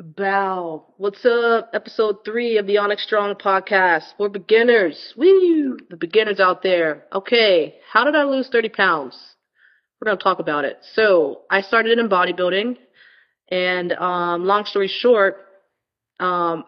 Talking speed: 150 wpm